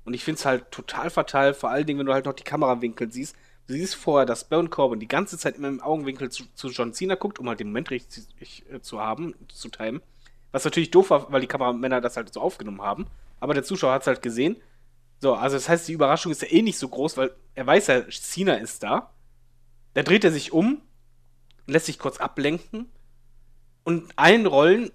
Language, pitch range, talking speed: German, 125-165 Hz, 220 wpm